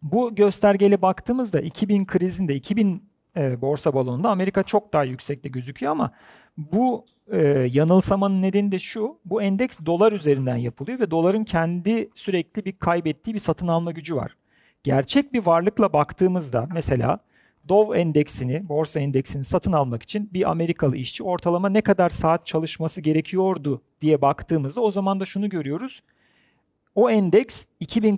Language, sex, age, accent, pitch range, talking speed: Turkish, male, 40-59, native, 155-210 Hz, 140 wpm